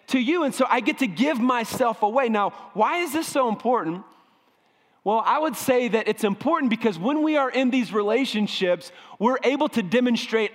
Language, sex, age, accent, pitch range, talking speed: English, male, 30-49, American, 185-245 Hz, 195 wpm